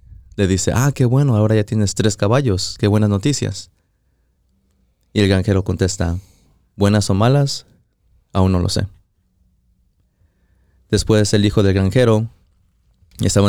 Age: 20-39